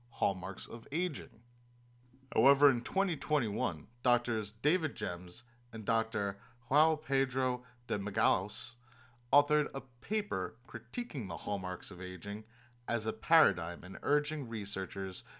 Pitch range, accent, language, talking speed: 110-135 Hz, American, English, 115 wpm